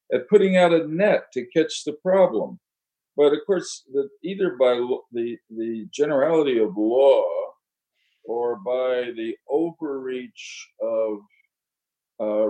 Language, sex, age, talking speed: English, male, 50-69, 130 wpm